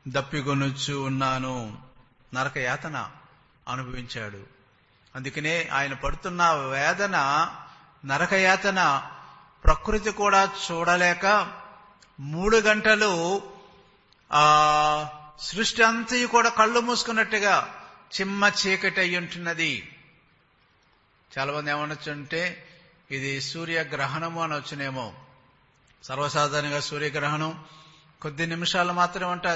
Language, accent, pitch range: English, Indian, 145-185 Hz